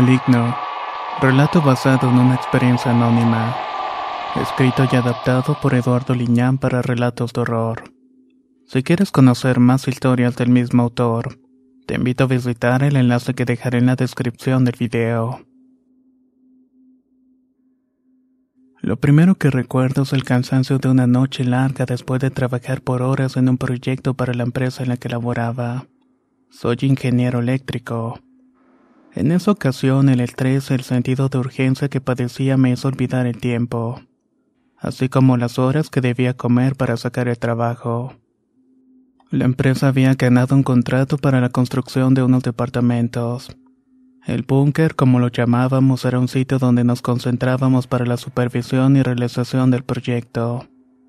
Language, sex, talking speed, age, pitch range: Spanish, male, 145 wpm, 20-39, 125-135 Hz